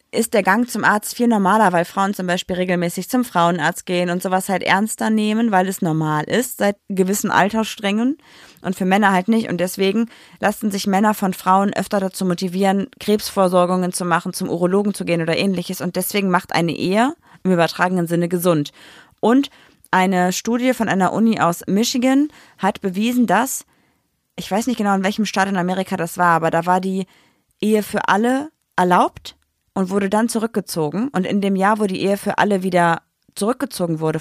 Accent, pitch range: German, 180-220 Hz